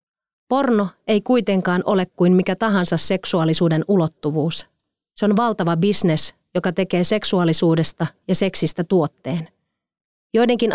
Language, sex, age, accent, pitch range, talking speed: Finnish, female, 30-49, native, 165-205 Hz, 110 wpm